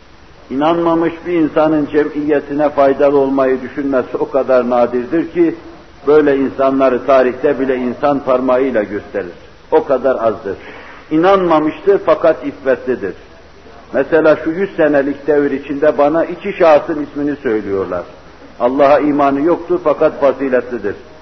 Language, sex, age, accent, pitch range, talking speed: Turkish, male, 60-79, native, 125-155 Hz, 115 wpm